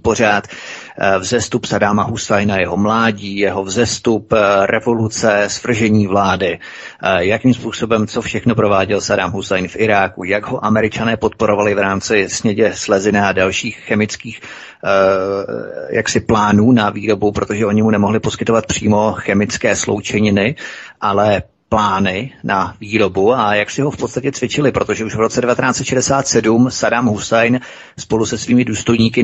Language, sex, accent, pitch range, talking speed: Czech, male, native, 105-120 Hz, 135 wpm